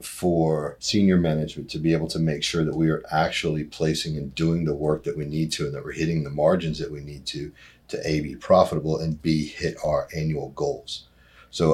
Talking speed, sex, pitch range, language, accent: 220 wpm, male, 75-85 Hz, English, American